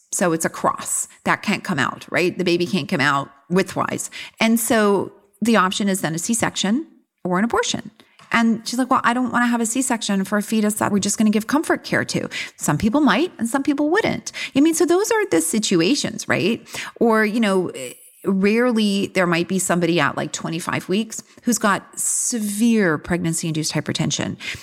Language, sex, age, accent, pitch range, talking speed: English, female, 40-59, American, 180-235 Hz, 195 wpm